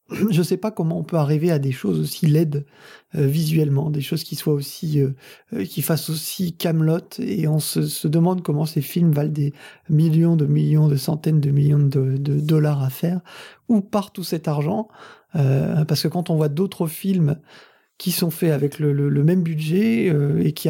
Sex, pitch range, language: male, 150-185 Hz, French